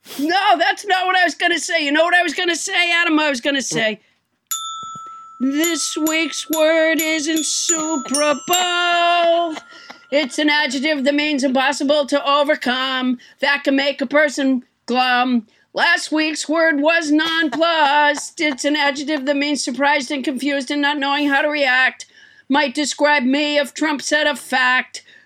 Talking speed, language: 165 wpm, English